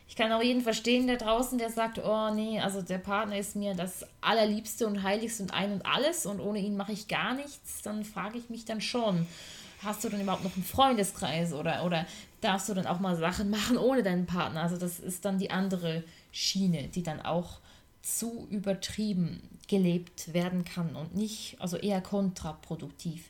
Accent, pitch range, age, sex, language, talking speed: German, 175-215 Hz, 20-39, female, German, 195 wpm